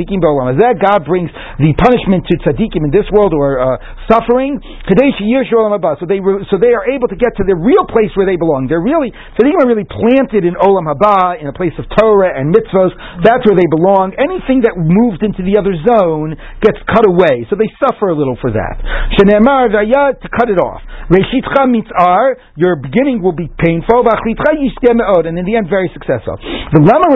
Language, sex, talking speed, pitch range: English, male, 180 wpm, 170-230 Hz